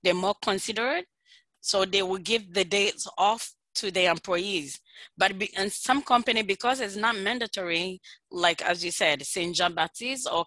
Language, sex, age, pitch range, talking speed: English, female, 20-39, 185-250 Hz, 160 wpm